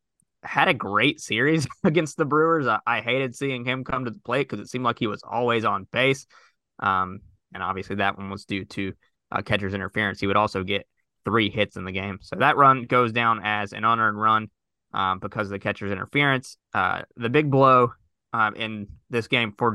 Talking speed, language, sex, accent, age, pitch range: 215 wpm, English, male, American, 20-39, 100-125 Hz